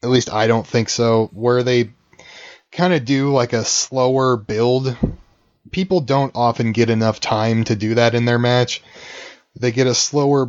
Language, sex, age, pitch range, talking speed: English, male, 20-39, 115-130 Hz, 175 wpm